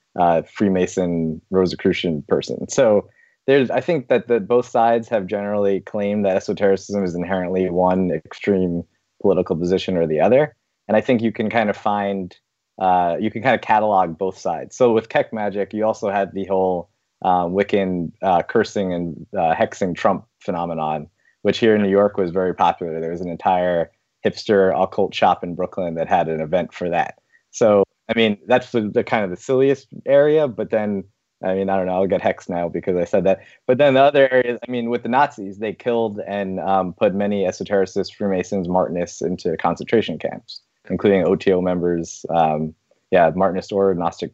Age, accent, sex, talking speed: 20-39, American, male, 185 wpm